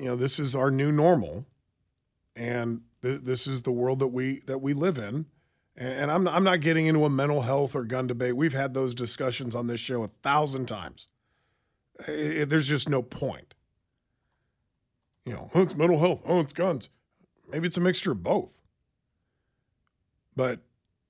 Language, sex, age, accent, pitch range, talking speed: English, male, 40-59, American, 125-160 Hz, 185 wpm